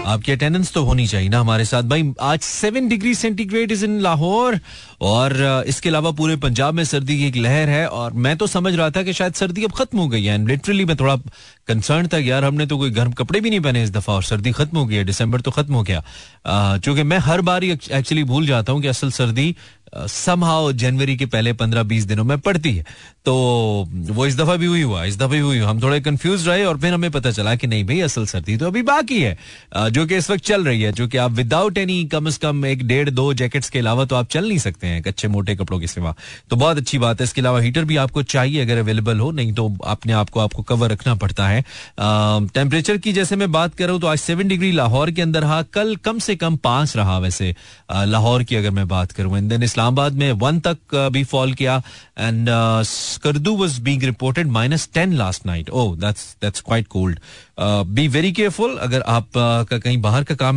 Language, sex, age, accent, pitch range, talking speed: Hindi, male, 30-49, native, 115-160 Hz, 210 wpm